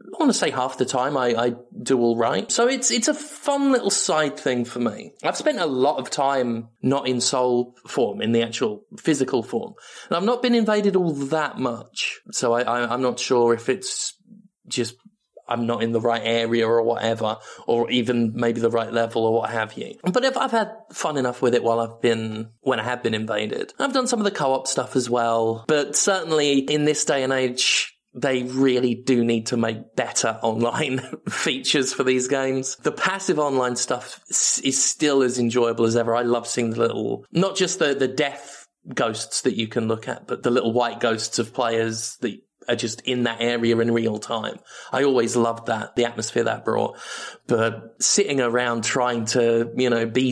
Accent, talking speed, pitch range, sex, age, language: British, 210 wpm, 115-145 Hz, male, 20-39, English